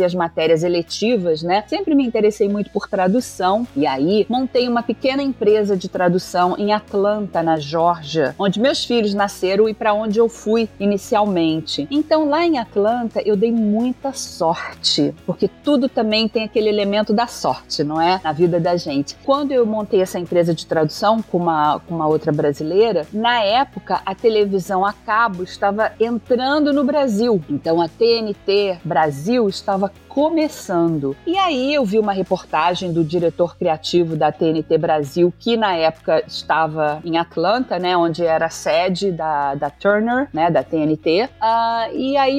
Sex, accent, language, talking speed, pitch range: female, Brazilian, Portuguese, 165 wpm, 175-240 Hz